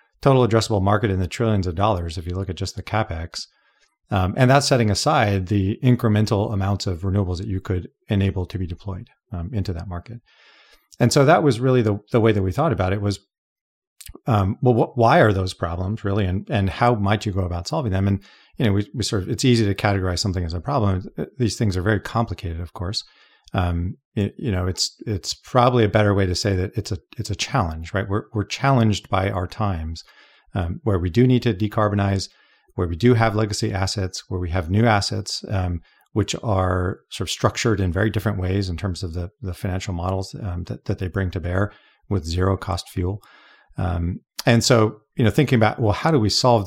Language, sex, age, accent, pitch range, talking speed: English, male, 40-59, American, 95-110 Hz, 220 wpm